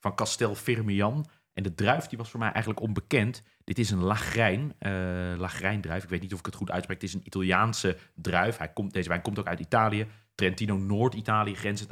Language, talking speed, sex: Dutch, 210 wpm, male